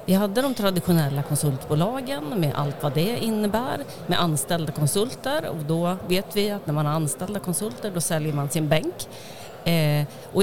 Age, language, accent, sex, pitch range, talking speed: 40-59, Swedish, native, female, 155-210 Hz, 165 wpm